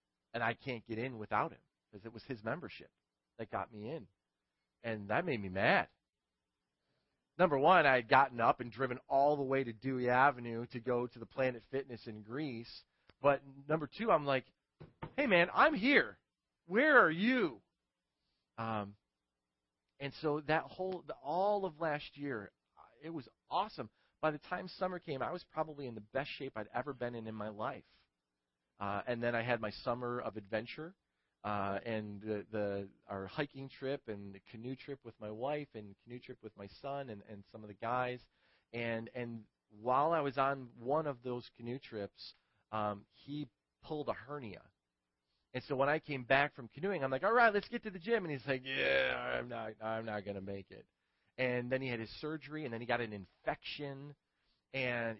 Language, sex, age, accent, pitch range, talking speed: English, male, 40-59, American, 105-140 Hz, 195 wpm